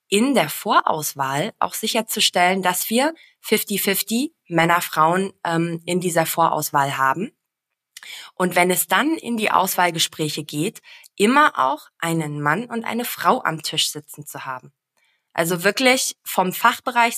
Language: German